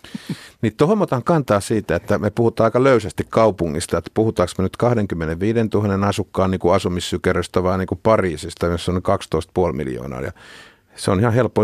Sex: male